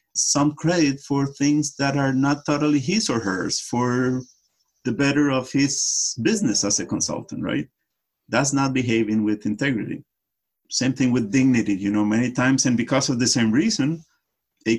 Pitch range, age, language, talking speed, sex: 110-140 Hz, 50-69, English, 165 wpm, male